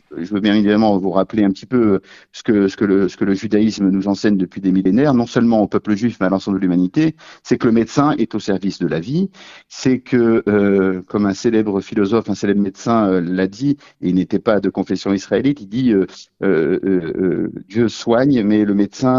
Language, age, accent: French, 50-69, French